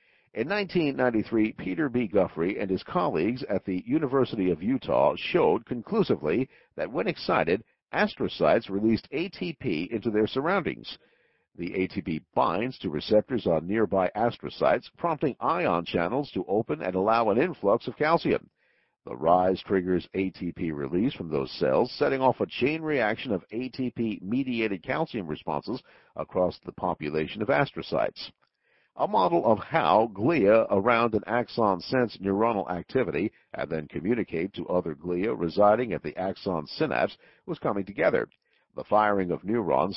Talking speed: 140 wpm